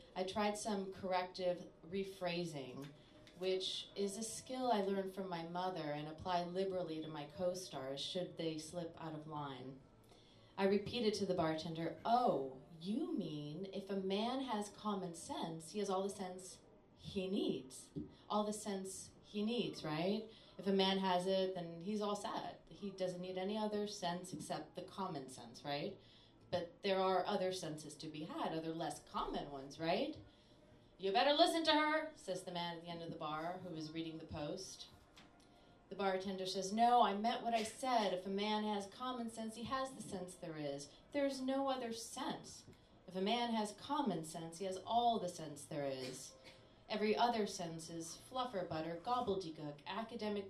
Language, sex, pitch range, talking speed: English, female, 160-210 Hz, 180 wpm